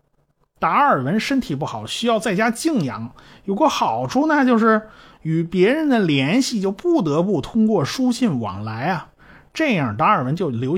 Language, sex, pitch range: Chinese, male, 145-235 Hz